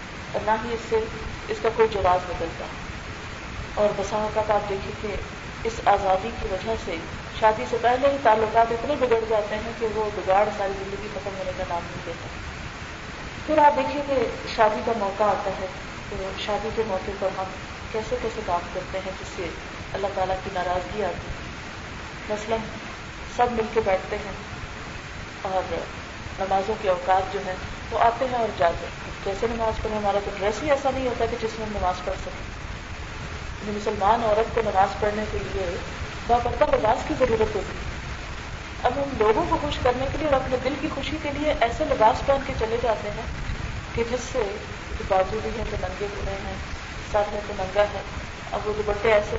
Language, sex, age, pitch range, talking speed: Urdu, female, 40-59, 195-230 Hz, 190 wpm